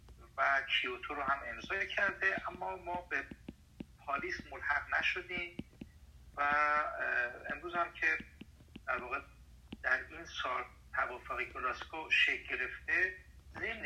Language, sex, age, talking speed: Persian, male, 50-69, 110 wpm